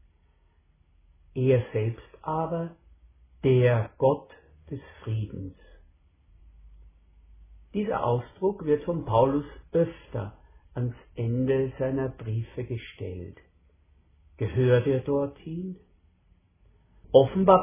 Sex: male